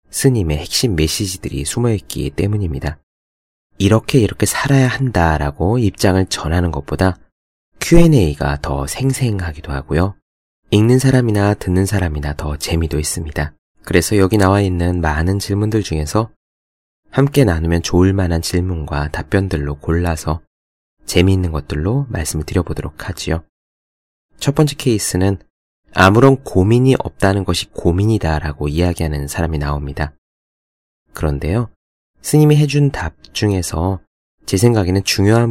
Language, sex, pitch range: Korean, male, 75-105 Hz